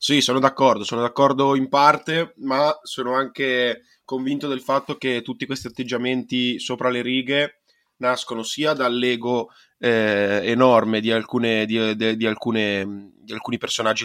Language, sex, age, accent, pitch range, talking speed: Italian, male, 20-39, native, 105-125 Hz, 145 wpm